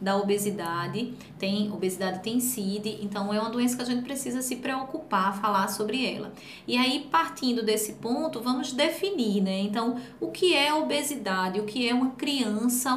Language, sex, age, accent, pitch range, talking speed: Portuguese, female, 20-39, Brazilian, 205-245 Hz, 170 wpm